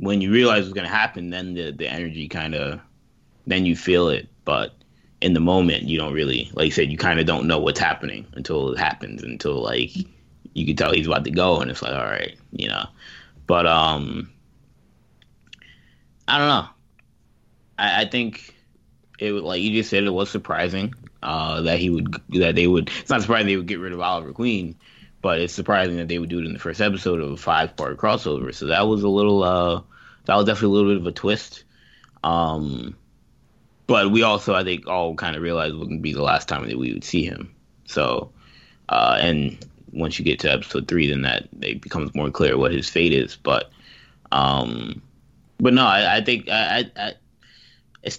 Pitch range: 80-105 Hz